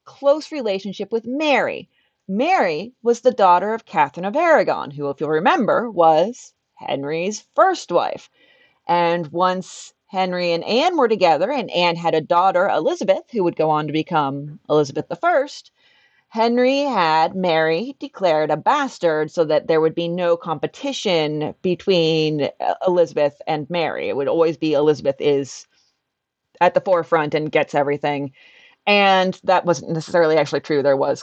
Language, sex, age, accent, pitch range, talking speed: English, female, 30-49, American, 160-230 Hz, 150 wpm